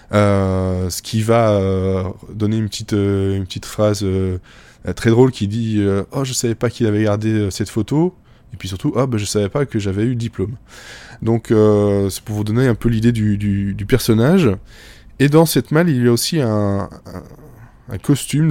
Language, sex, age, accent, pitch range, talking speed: French, male, 20-39, French, 95-120 Hz, 210 wpm